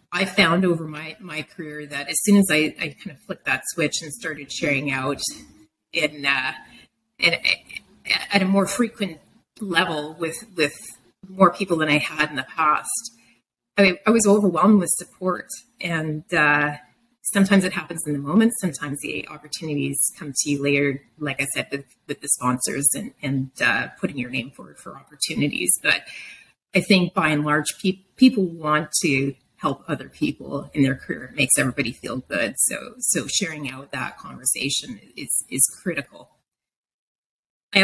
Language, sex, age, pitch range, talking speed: English, female, 30-49, 145-200 Hz, 170 wpm